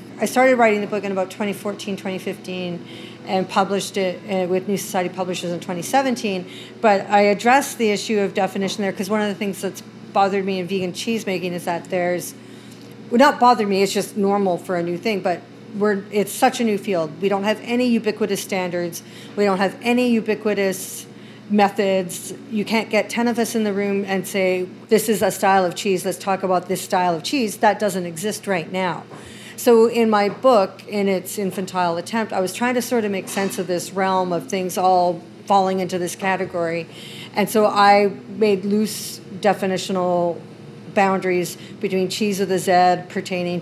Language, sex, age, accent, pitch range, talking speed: English, female, 40-59, American, 185-215 Hz, 190 wpm